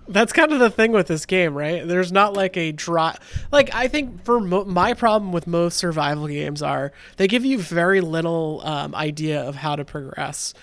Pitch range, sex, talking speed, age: 155-200 Hz, male, 205 wpm, 20-39